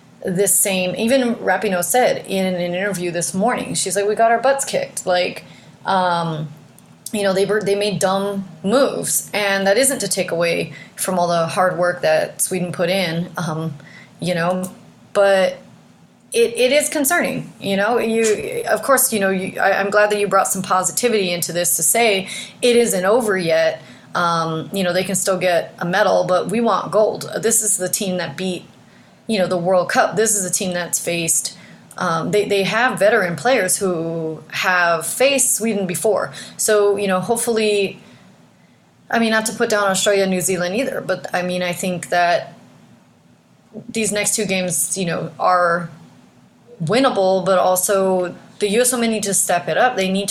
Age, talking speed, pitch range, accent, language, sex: 30-49, 185 wpm, 180-215 Hz, American, English, female